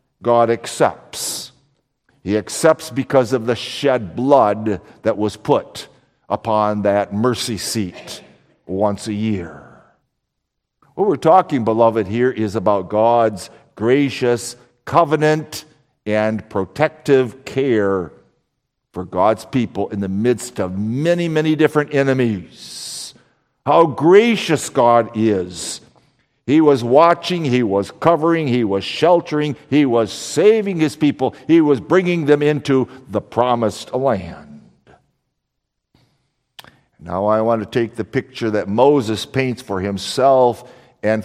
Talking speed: 120 wpm